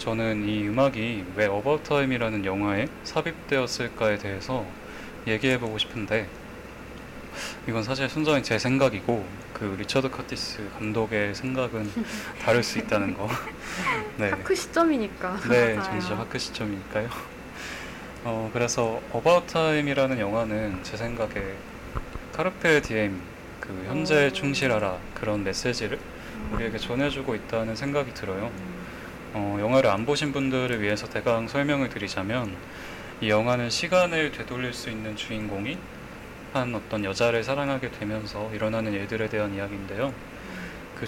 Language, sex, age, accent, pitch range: Korean, male, 20-39, native, 105-135 Hz